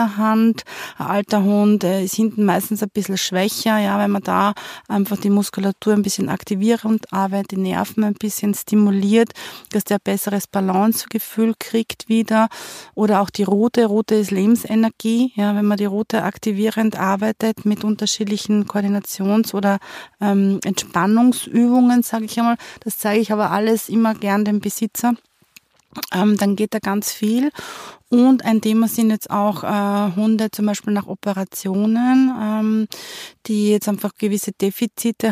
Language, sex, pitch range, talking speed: German, female, 200-220 Hz, 150 wpm